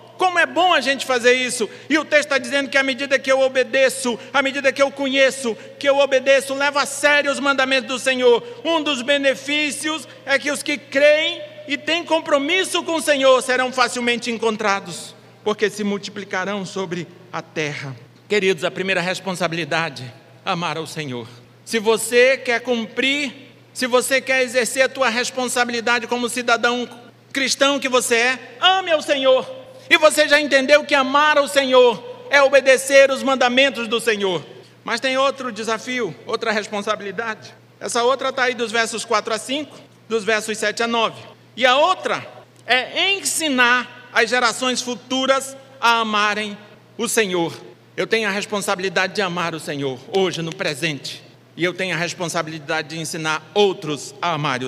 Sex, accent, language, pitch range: male, Brazilian, Portuguese, 200-270 Hz